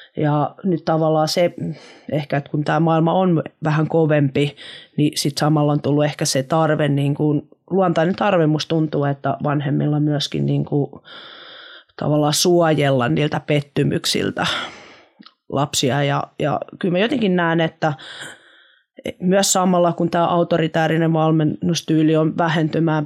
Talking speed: 135 wpm